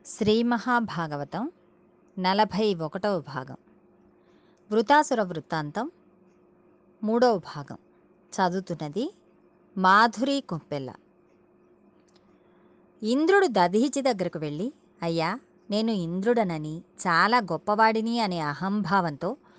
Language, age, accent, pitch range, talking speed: Telugu, 20-39, native, 175-235 Hz, 65 wpm